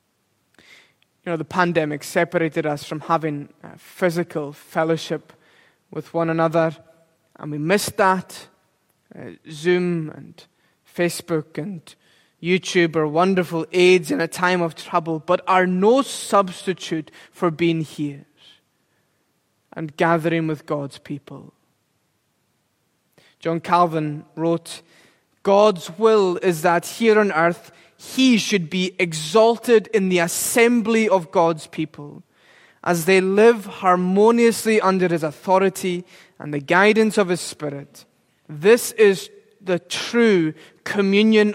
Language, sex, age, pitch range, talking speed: English, male, 20-39, 160-200 Hz, 120 wpm